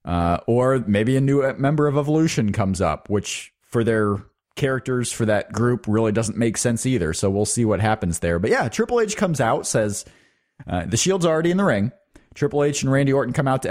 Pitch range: 110-150 Hz